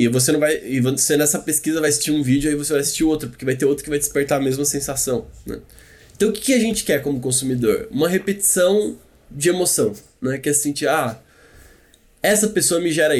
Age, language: 20-39, Portuguese